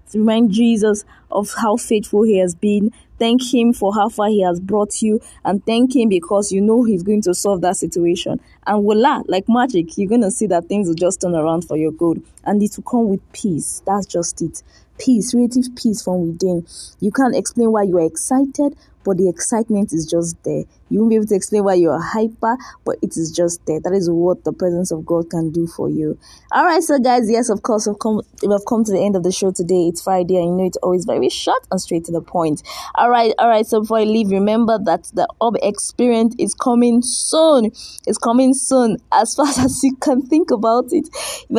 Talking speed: 230 wpm